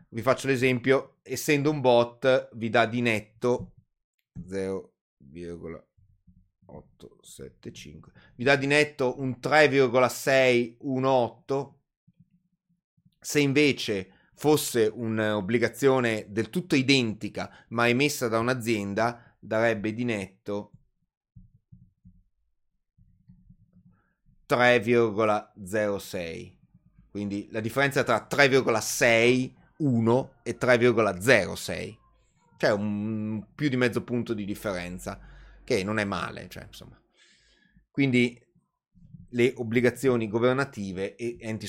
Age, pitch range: 30-49, 105-140 Hz